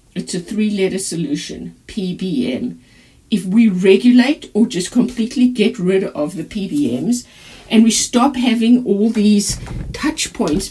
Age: 50-69